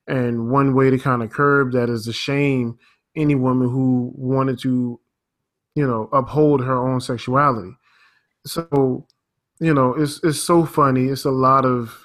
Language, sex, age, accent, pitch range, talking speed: English, male, 20-39, American, 125-145 Hz, 165 wpm